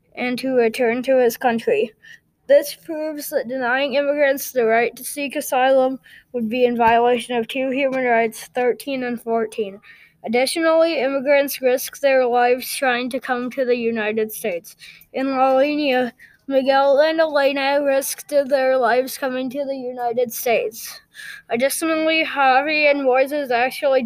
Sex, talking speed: female, 145 wpm